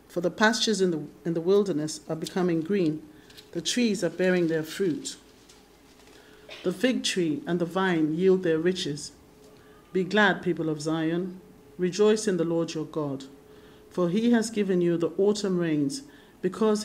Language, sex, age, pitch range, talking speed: English, male, 50-69, 150-185 Hz, 165 wpm